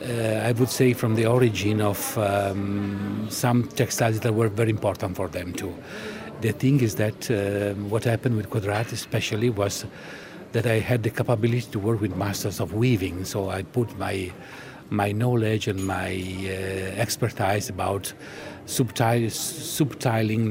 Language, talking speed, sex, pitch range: English, 155 wpm, male, 100-120 Hz